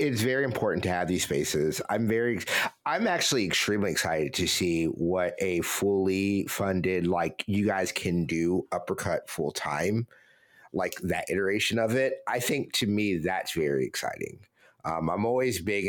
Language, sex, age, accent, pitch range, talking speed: English, male, 50-69, American, 90-115 Hz, 160 wpm